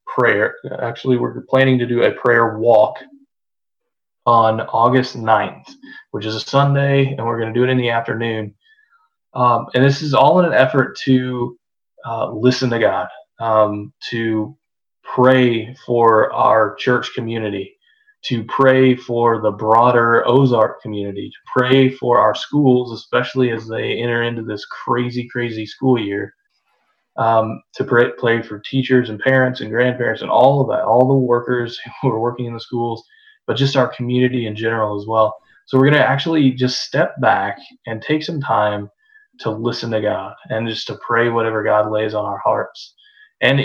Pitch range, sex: 115-130 Hz, male